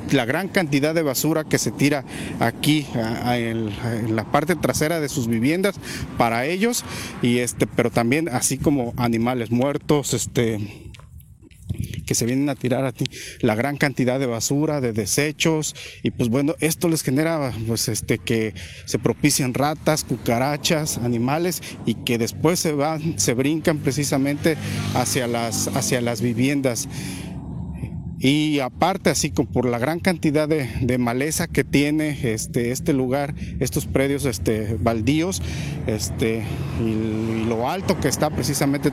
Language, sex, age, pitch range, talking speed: Spanish, male, 40-59, 120-155 Hz, 150 wpm